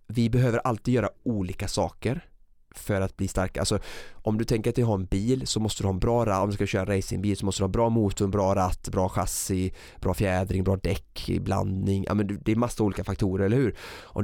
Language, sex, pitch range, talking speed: Swedish, male, 95-115 Hz, 245 wpm